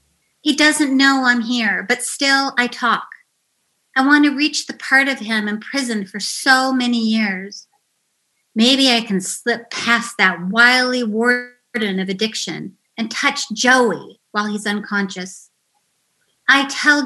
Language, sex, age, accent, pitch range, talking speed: English, female, 40-59, American, 205-250 Hz, 140 wpm